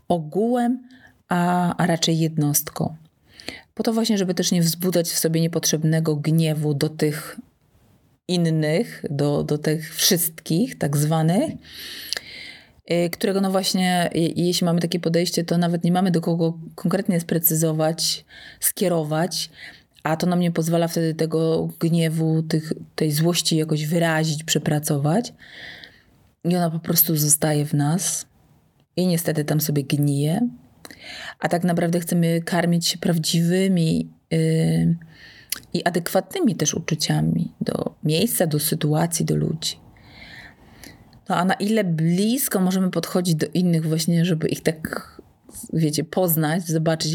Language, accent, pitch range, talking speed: Polish, native, 160-185 Hz, 130 wpm